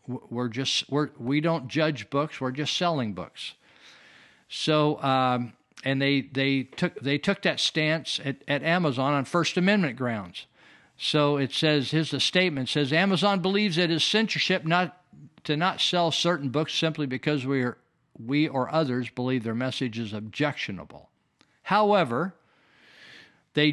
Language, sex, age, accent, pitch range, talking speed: English, male, 50-69, American, 135-165 Hz, 155 wpm